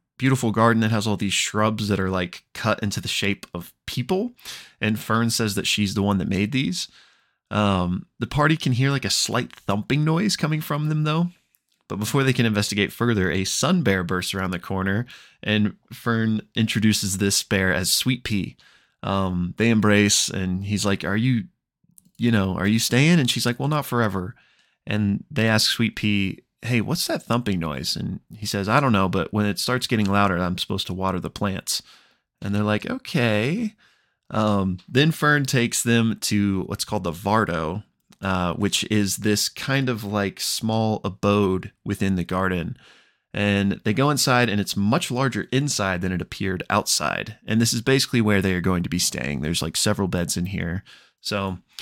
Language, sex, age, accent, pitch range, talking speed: English, male, 20-39, American, 95-120 Hz, 190 wpm